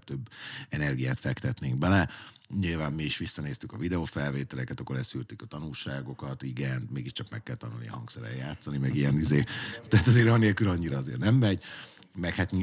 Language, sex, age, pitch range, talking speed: Hungarian, male, 30-49, 70-100 Hz, 155 wpm